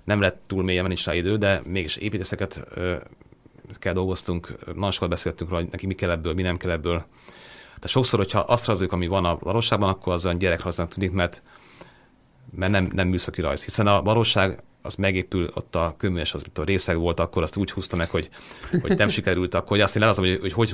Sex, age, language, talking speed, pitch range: male, 30-49, Hungarian, 210 wpm, 90-100 Hz